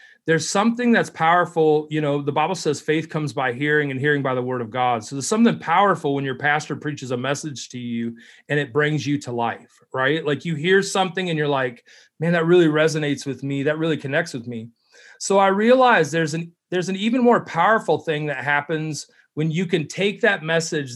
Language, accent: English, American